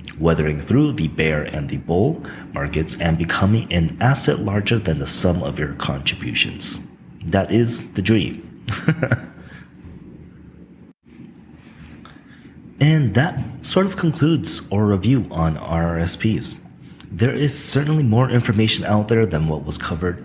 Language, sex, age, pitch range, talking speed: English, male, 30-49, 80-125 Hz, 125 wpm